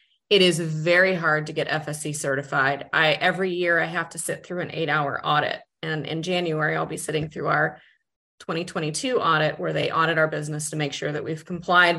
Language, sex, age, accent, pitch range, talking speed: English, female, 30-49, American, 150-175 Hz, 200 wpm